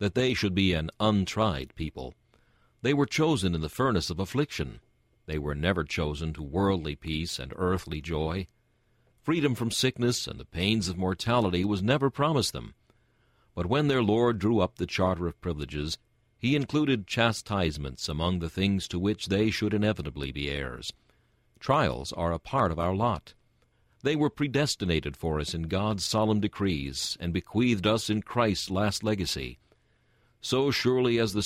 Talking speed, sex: 165 wpm, male